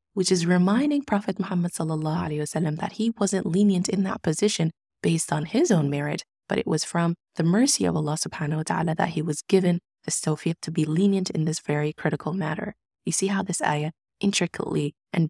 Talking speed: 195 wpm